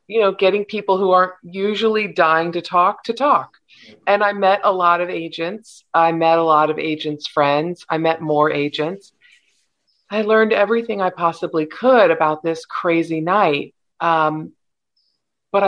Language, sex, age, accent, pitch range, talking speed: English, female, 40-59, American, 150-190 Hz, 160 wpm